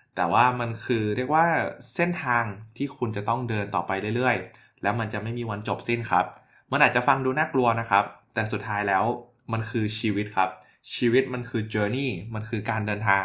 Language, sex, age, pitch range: Thai, male, 20-39, 100-125 Hz